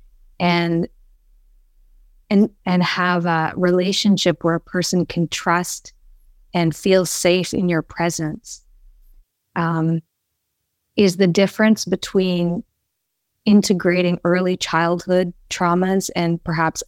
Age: 20-39